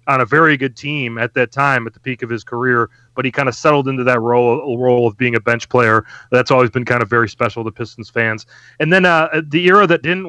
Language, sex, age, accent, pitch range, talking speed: English, male, 30-49, American, 120-140 Hz, 260 wpm